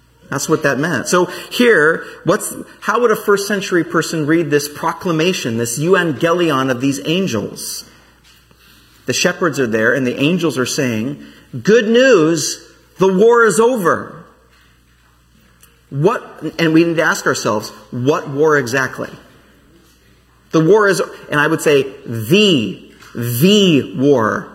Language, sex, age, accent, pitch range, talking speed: English, male, 40-59, American, 145-200 Hz, 135 wpm